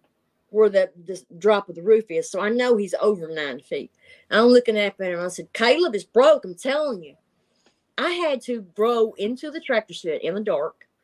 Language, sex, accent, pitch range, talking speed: English, female, American, 180-240 Hz, 205 wpm